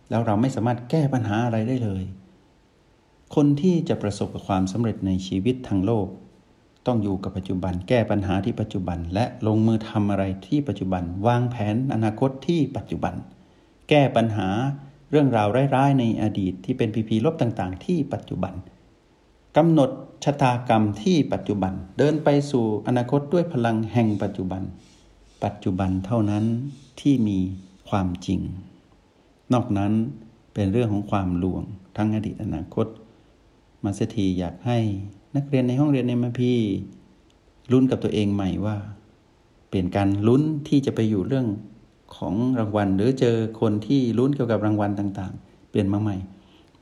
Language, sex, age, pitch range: Thai, male, 60-79, 95-125 Hz